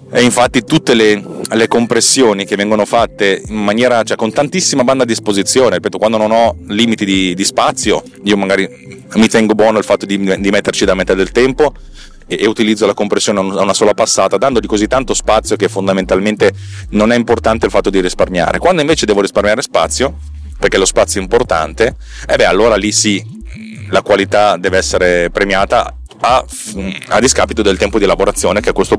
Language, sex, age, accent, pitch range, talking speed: Italian, male, 30-49, native, 95-115 Hz, 190 wpm